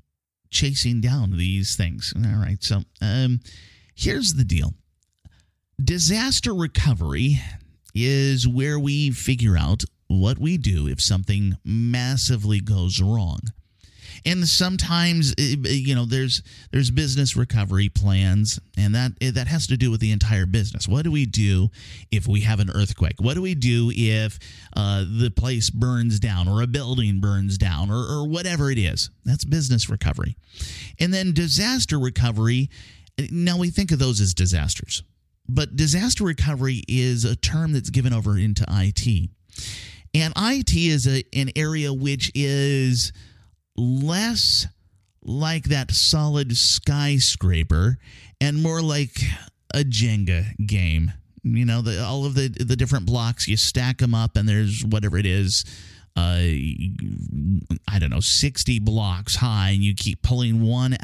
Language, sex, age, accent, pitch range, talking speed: English, male, 30-49, American, 100-130 Hz, 145 wpm